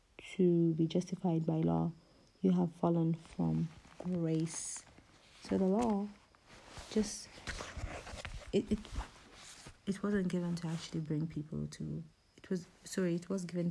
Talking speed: 130 wpm